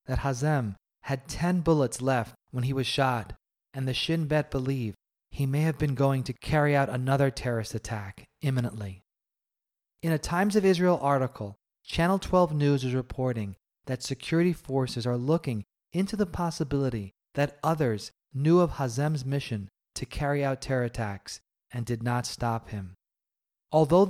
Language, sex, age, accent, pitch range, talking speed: English, male, 30-49, American, 120-155 Hz, 155 wpm